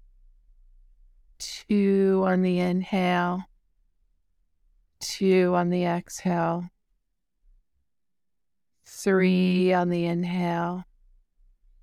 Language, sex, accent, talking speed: English, female, American, 60 wpm